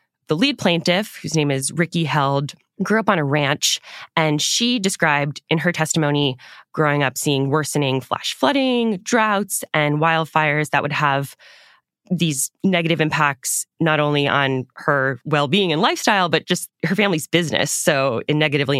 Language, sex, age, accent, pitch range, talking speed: English, female, 10-29, American, 140-185 Hz, 155 wpm